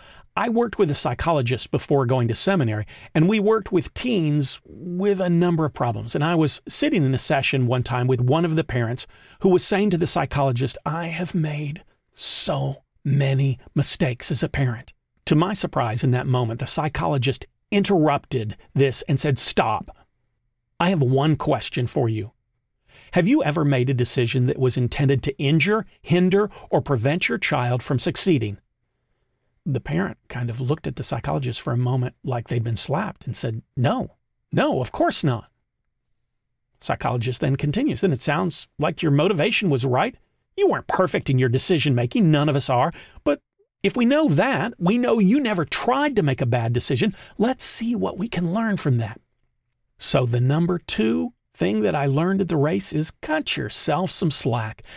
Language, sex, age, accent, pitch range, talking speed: English, male, 40-59, American, 125-180 Hz, 185 wpm